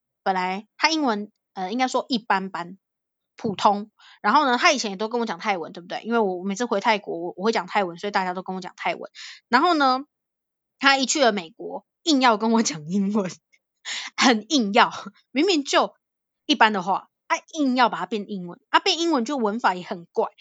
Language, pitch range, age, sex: Chinese, 200-275 Hz, 20-39, female